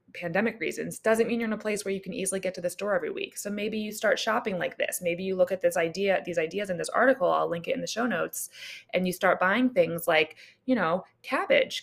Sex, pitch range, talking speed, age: female, 175-235 Hz, 265 wpm, 20-39